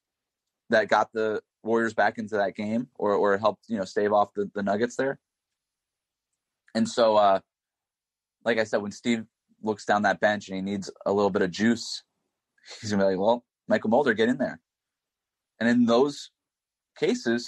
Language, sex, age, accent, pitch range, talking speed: English, male, 30-49, American, 105-120 Hz, 185 wpm